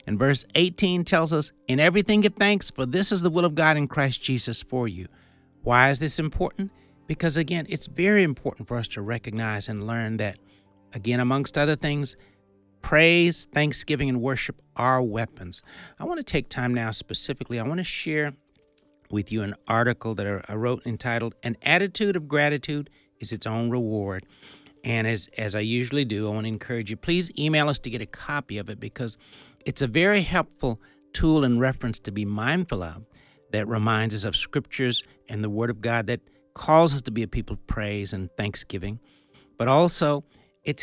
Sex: male